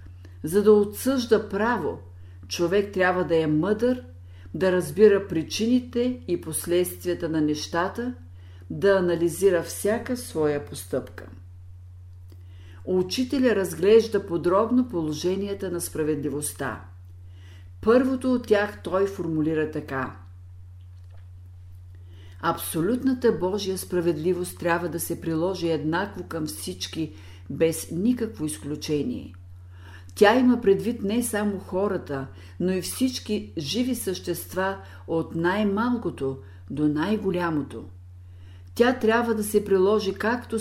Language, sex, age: Bulgarian, female, 50-69